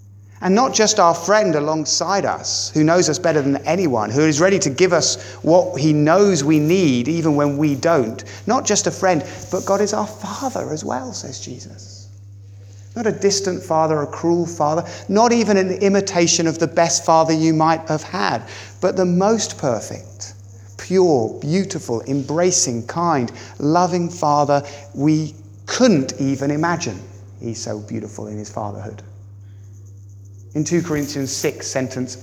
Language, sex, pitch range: English, male, 100-155 Hz